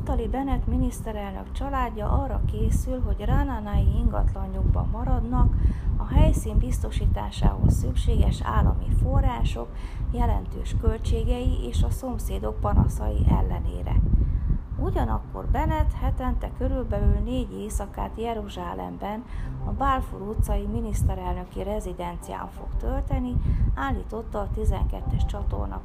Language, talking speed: Hungarian, 95 wpm